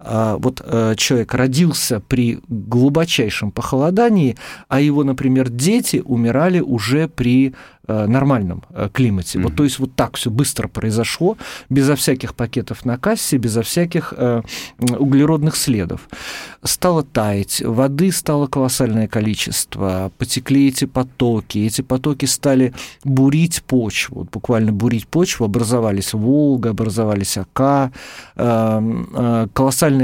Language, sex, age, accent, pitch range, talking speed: Russian, male, 50-69, native, 115-145 Hz, 110 wpm